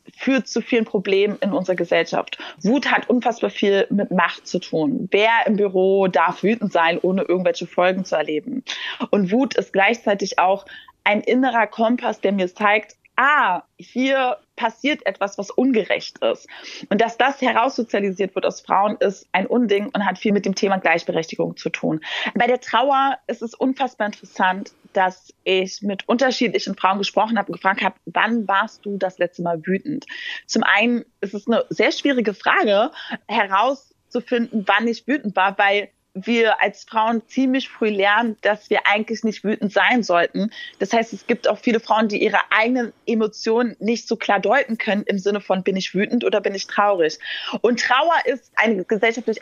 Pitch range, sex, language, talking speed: 195-240 Hz, female, German, 175 wpm